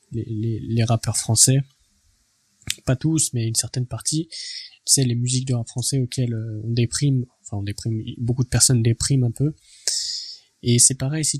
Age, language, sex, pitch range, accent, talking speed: 20-39, French, male, 120-140 Hz, French, 185 wpm